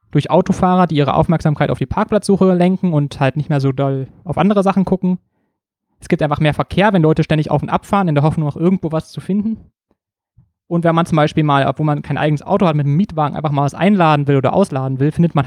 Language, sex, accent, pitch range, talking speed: German, male, German, 140-170 Hz, 245 wpm